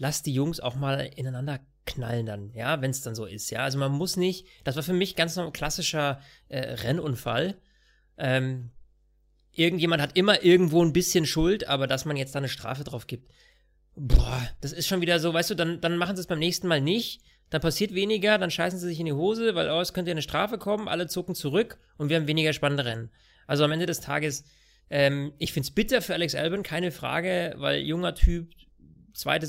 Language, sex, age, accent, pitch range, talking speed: German, male, 30-49, German, 130-170 Hz, 220 wpm